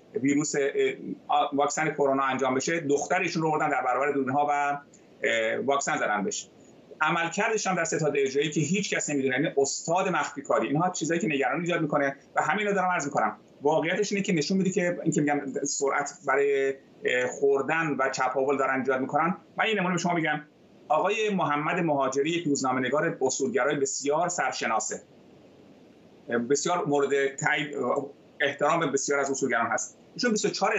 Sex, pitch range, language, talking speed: male, 140-180 Hz, Persian, 150 wpm